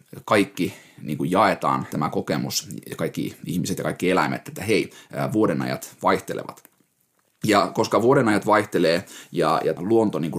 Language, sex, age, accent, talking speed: Finnish, male, 30-49, native, 125 wpm